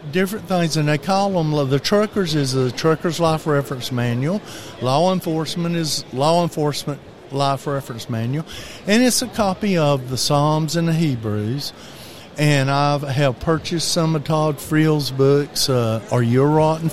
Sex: male